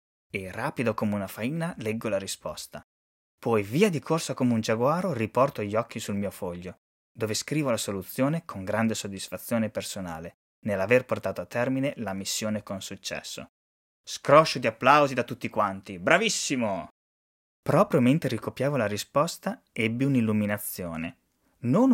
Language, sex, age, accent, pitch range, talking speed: Italian, male, 20-39, native, 100-140 Hz, 140 wpm